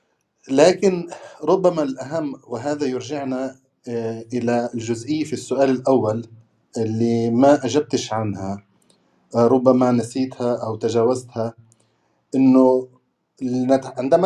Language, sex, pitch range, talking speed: Arabic, male, 115-140 Hz, 85 wpm